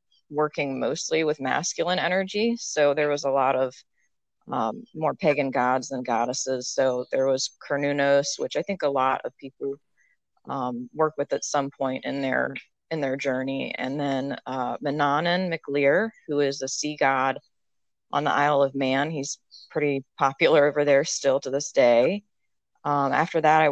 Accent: American